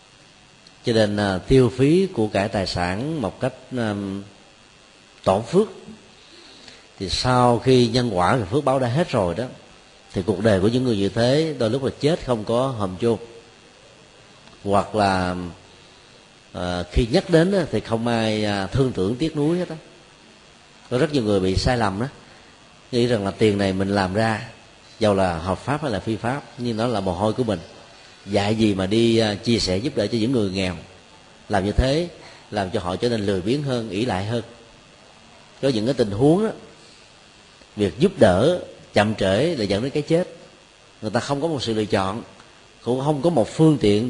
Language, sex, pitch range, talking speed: Vietnamese, male, 100-130 Hz, 200 wpm